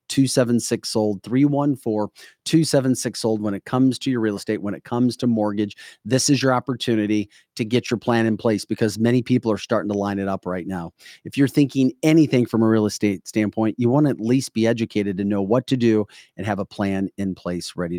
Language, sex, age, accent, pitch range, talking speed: English, male, 40-59, American, 105-130 Hz, 240 wpm